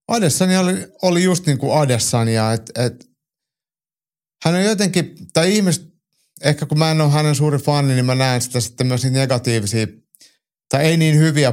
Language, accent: Finnish, native